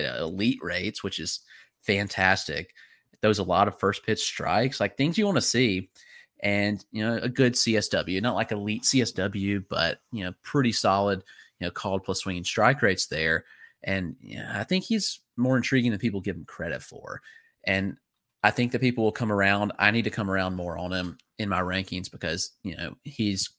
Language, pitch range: English, 95-120 Hz